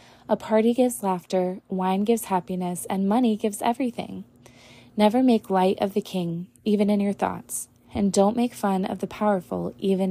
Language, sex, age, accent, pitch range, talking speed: English, female, 20-39, American, 170-210 Hz, 170 wpm